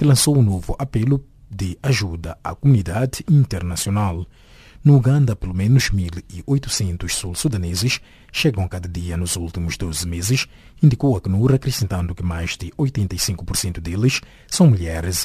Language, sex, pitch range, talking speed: English, male, 90-130 Hz, 130 wpm